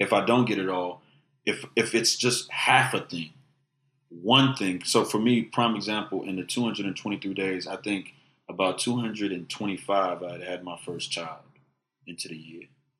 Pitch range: 85-105 Hz